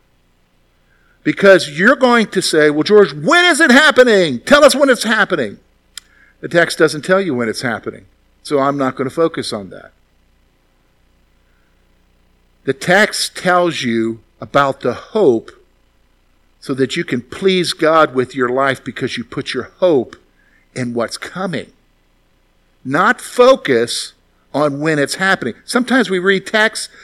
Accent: American